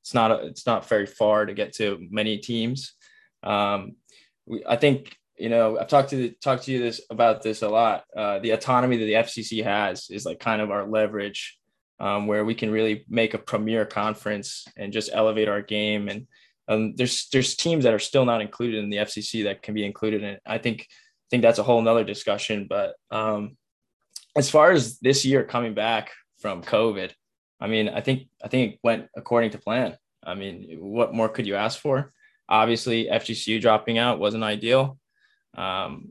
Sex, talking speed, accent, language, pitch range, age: male, 205 wpm, American, English, 110-130 Hz, 20-39